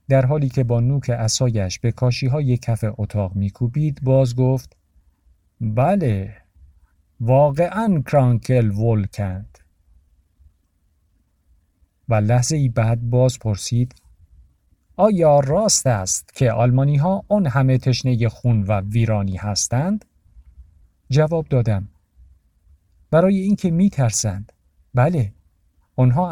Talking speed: 100 wpm